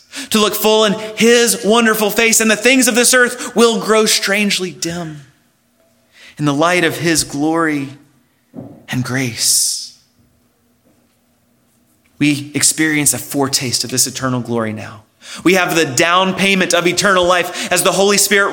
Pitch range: 130-195 Hz